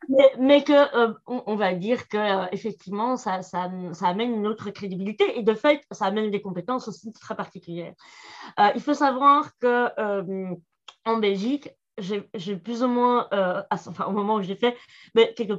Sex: female